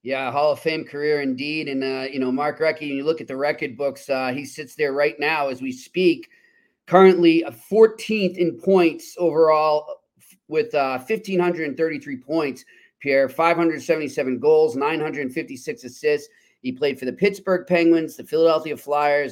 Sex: male